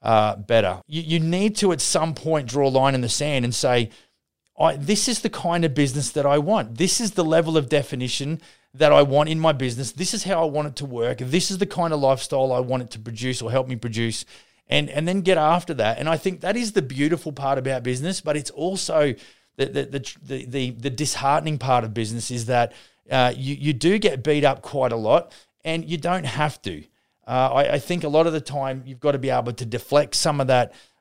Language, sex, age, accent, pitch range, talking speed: English, male, 30-49, Australian, 125-150 Hz, 245 wpm